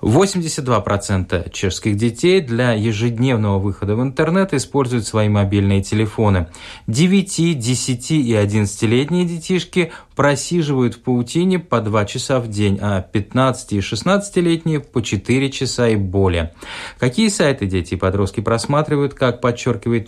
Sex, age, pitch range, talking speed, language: male, 20-39, 105-135 Hz, 125 wpm, Russian